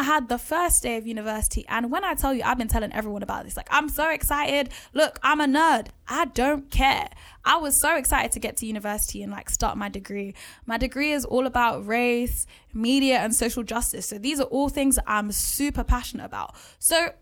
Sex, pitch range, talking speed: female, 240-310 Hz, 215 wpm